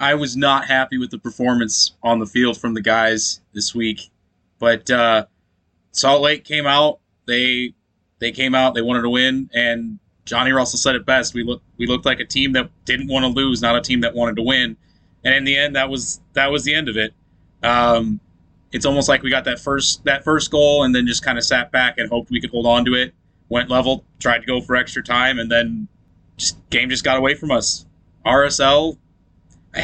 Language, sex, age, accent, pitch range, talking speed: English, male, 20-39, American, 110-135 Hz, 225 wpm